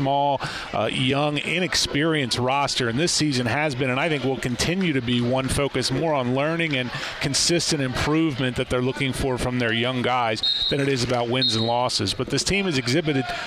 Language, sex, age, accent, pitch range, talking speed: English, male, 30-49, American, 125-150 Hz, 200 wpm